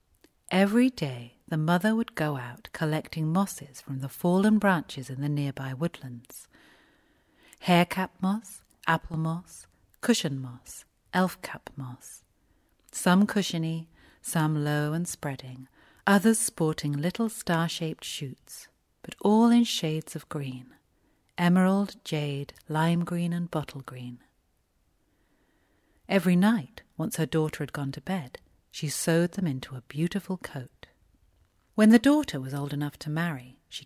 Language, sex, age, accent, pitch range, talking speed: English, female, 40-59, British, 135-190 Hz, 130 wpm